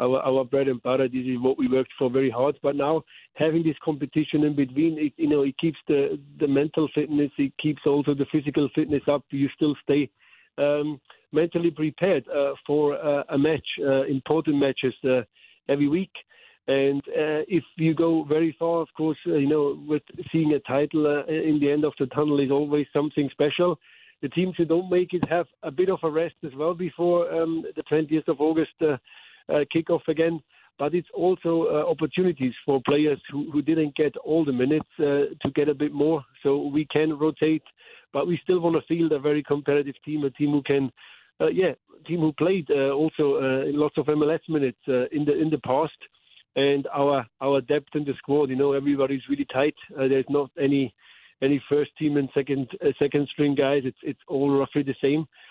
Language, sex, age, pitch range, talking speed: English, male, 50-69, 140-160 Hz, 210 wpm